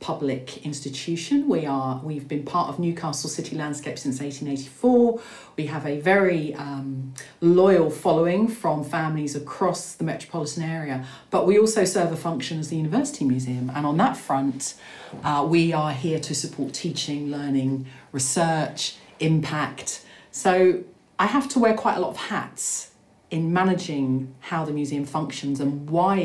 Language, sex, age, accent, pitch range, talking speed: English, female, 40-59, British, 140-180 Hz, 160 wpm